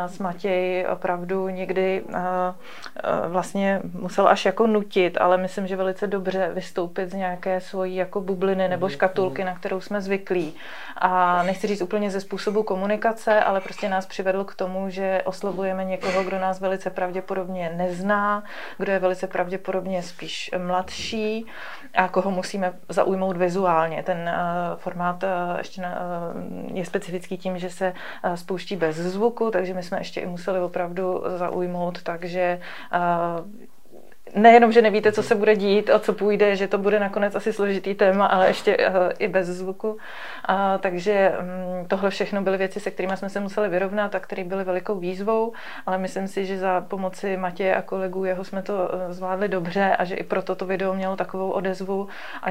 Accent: native